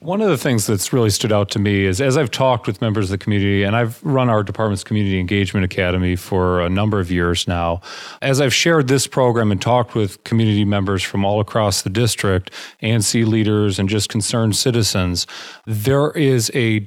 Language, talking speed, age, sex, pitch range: English, 205 wpm, 40-59, male, 100-125 Hz